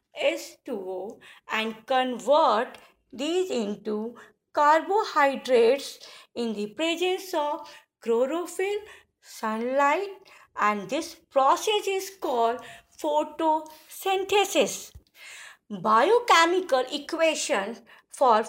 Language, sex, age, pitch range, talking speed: English, female, 50-69, 230-360 Hz, 70 wpm